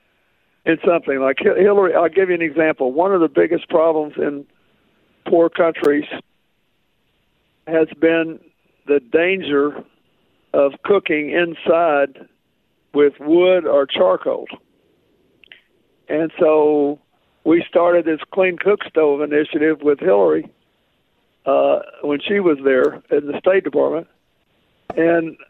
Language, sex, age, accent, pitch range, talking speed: English, male, 60-79, American, 150-175 Hz, 115 wpm